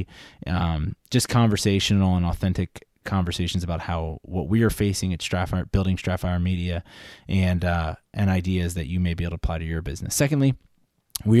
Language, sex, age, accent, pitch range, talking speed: English, male, 20-39, American, 90-110 Hz, 175 wpm